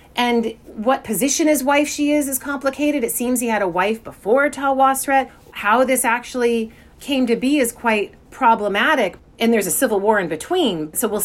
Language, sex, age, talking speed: English, female, 30-49, 185 wpm